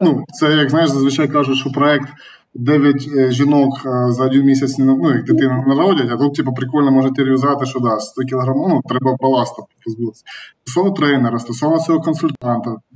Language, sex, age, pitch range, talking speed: Ukrainian, male, 20-39, 130-150 Hz, 165 wpm